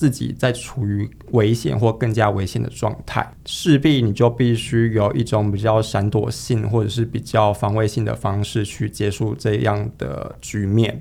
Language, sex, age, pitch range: Chinese, male, 20-39, 110-125 Hz